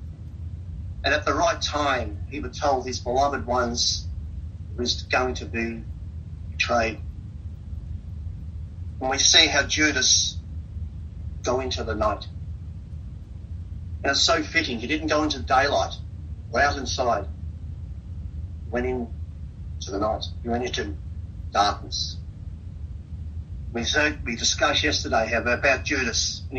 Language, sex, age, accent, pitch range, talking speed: English, male, 40-59, Australian, 80-95 Hz, 120 wpm